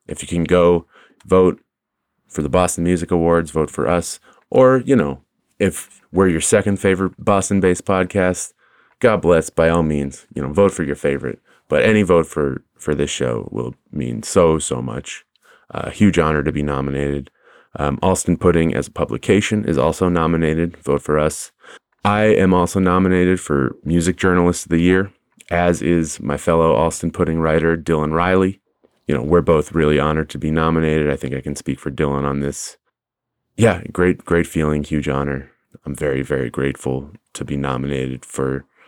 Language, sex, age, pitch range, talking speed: English, male, 30-49, 70-90 Hz, 180 wpm